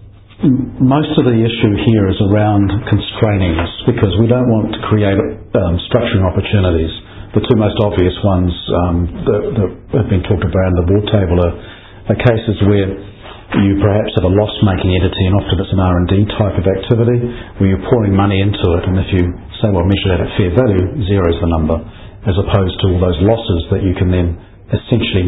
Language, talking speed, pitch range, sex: English, 195 wpm, 95-110 Hz, male